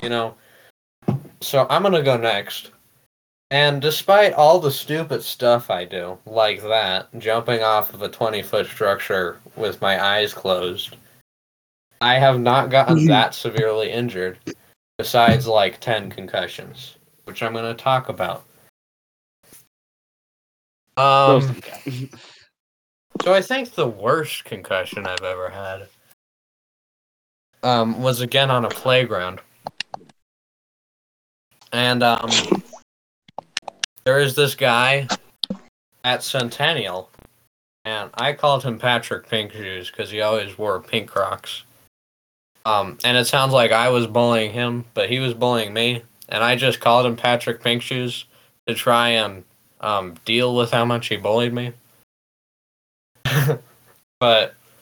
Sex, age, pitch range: male, 10-29, 110-130 Hz